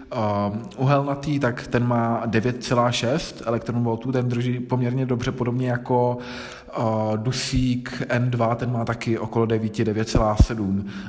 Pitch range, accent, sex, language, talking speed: 120-140 Hz, native, male, Czech, 105 wpm